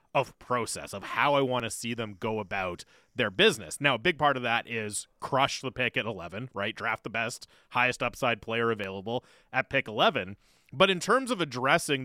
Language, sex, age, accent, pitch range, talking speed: English, male, 30-49, American, 115-160 Hz, 205 wpm